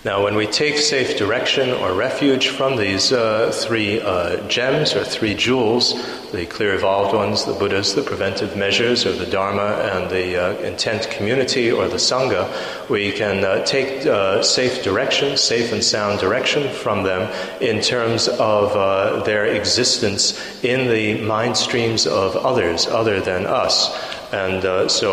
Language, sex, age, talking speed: English, male, 30-49, 160 wpm